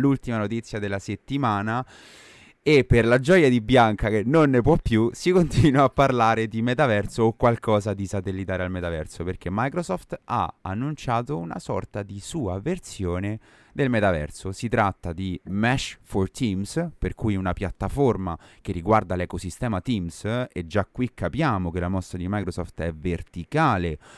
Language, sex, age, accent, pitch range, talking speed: Italian, male, 30-49, native, 90-120 Hz, 155 wpm